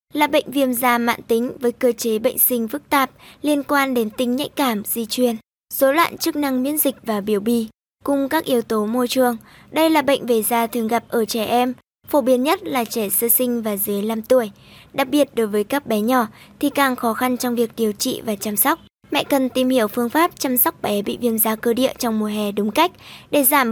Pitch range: 225-280 Hz